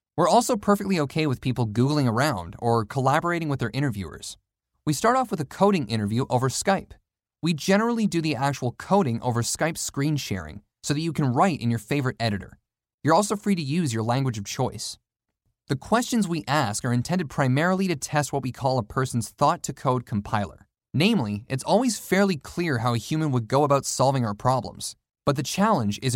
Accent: American